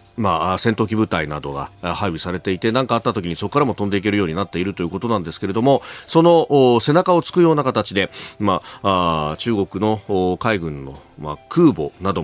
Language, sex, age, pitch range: Japanese, male, 40-59, 90-130 Hz